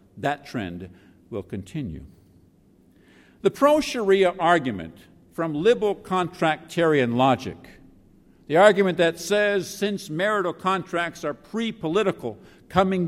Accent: American